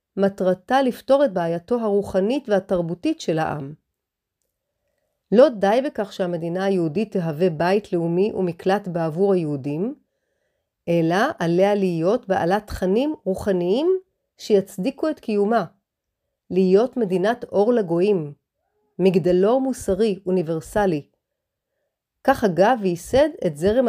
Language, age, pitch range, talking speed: Hebrew, 40-59, 180-230 Hz, 100 wpm